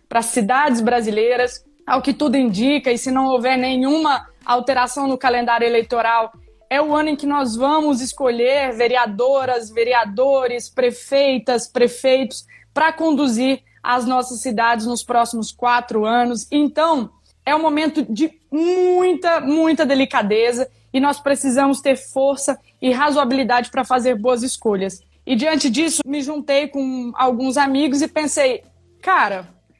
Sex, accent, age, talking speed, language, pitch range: female, Brazilian, 20-39, 135 wpm, Portuguese, 245-285 Hz